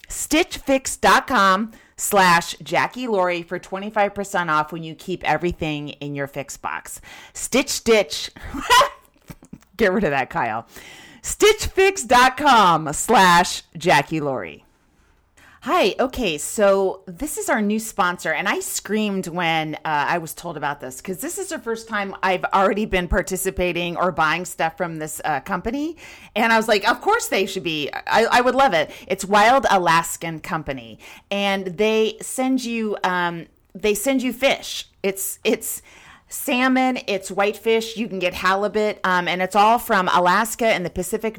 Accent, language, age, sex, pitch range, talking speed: American, English, 40-59, female, 180-230 Hz, 150 wpm